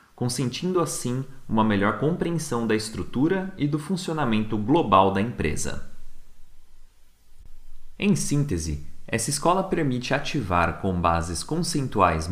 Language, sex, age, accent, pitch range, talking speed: Portuguese, male, 30-49, Brazilian, 90-145 Hz, 105 wpm